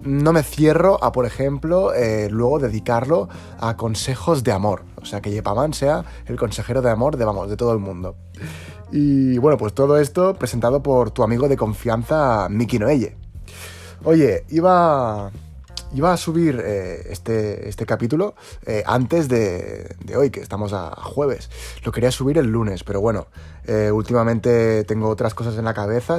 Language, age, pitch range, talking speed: Spanish, 20-39, 105-130 Hz, 170 wpm